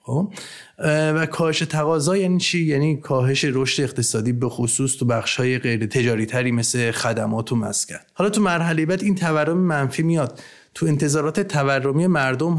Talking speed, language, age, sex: 155 wpm, Persian, 30-49, male